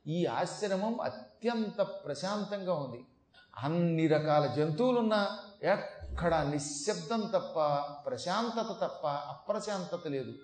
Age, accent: 40-59, native